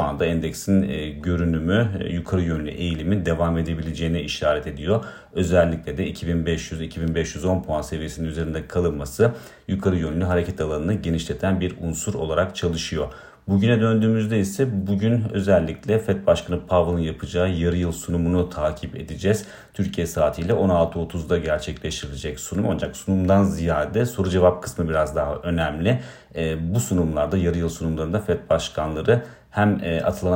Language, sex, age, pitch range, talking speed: Turkish, male, 40-59, 80-90 Hz, 125 wpm